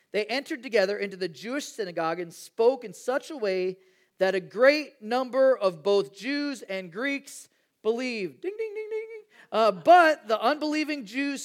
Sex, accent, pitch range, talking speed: male, American, 195-285 Hz, 170 wpm